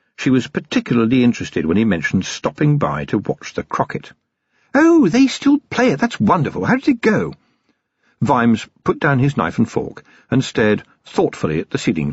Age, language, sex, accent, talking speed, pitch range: 50-69, English, male, British, 185 wpm, 115-190 Hz